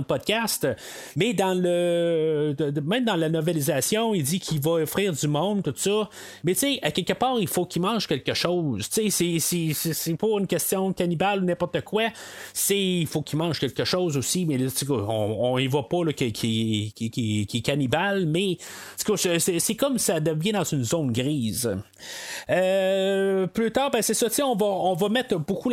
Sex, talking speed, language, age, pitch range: male, 195 wpm, French, 30-49, 135-180 Hz